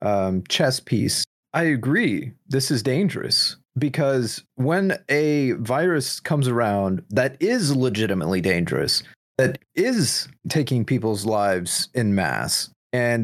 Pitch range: 105-145 Hz